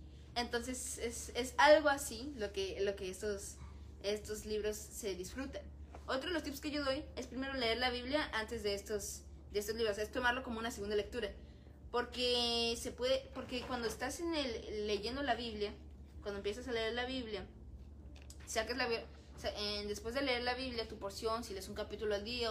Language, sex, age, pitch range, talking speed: Spanish, female, 20-39, 205-245 Hz, 190 wpm